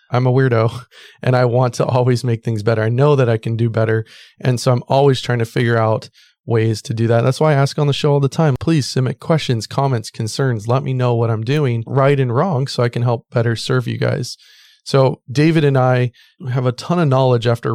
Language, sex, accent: English, male, American